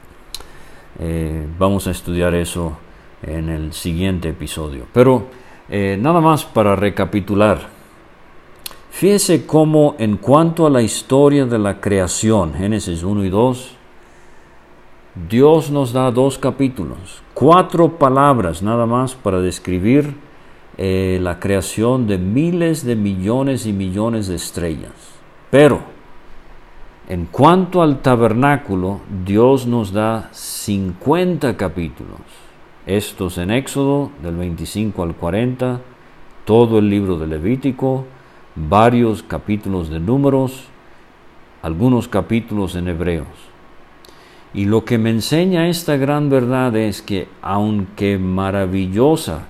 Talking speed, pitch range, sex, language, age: 115 wpm, 90-130 Hz, male, English, 50-69